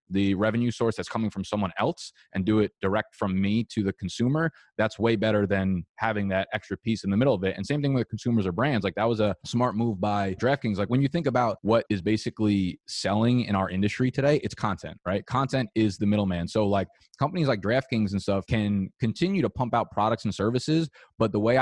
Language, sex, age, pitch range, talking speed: English, male, 20-39, 100-115 Hz, 230 wpm